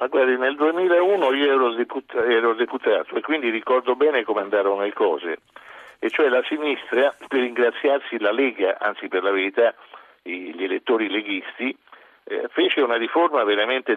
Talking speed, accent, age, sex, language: 160 wpm, native, 50-69, male, Italian